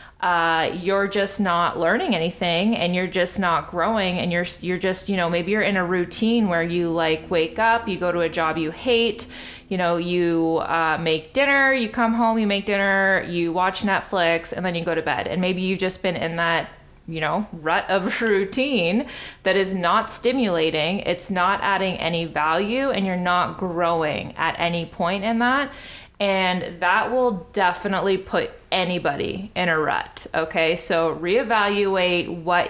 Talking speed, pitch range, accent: 180 wpm, 170-215 Hz, American